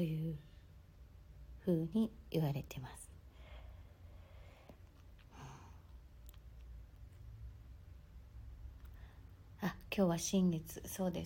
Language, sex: Japanese, female